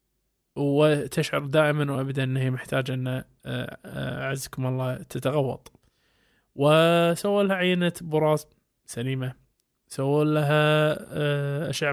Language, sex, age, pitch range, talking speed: Arabic, male, 20-39, 135-160 Hz, 85 wpm